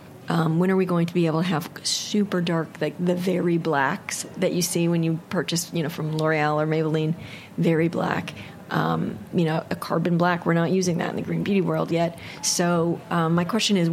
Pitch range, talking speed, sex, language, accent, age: 165-200 Hz, 220 wpm, female, English, American, 30-49